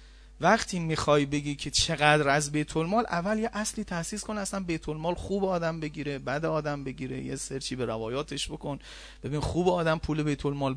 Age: 30-49